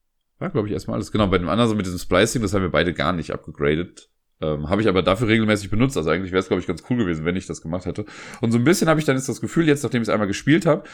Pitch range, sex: 95-120 Hz, male